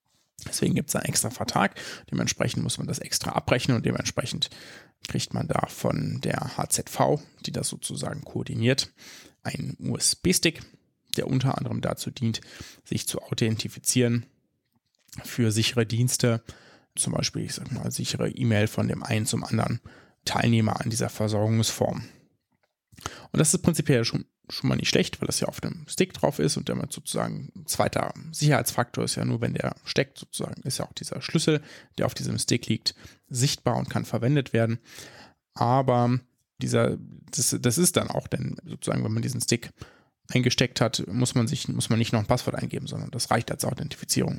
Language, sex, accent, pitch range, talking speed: German, male, German, 115-135 Hz, 175 wpm